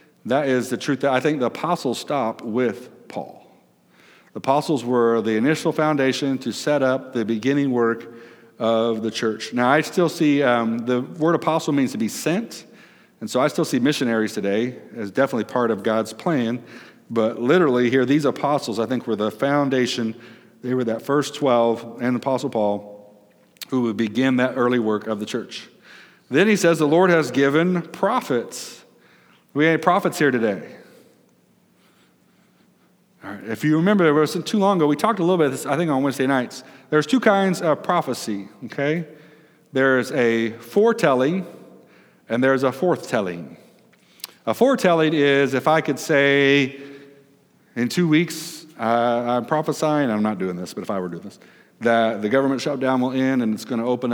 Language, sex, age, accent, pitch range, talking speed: English, male, 50-69, American, 115-155 Hz, 175 wpm